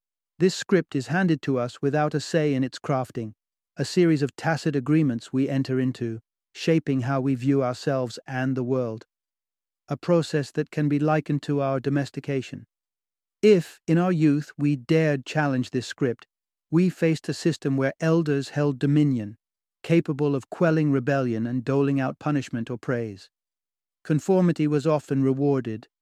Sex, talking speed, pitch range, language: male, 155 wpm, 130-155 Hz, English